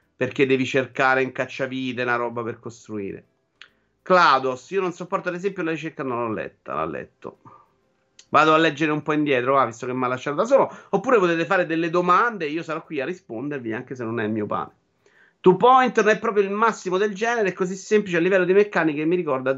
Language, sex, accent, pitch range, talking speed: Italian, male, native, 130-185 Hz, 225 wpm